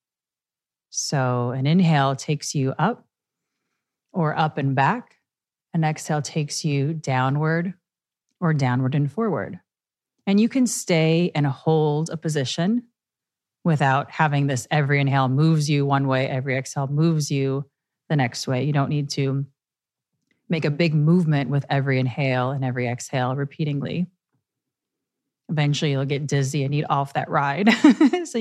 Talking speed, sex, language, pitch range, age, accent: 145 wpm, female, English, 140-170 Hz, 30-49, American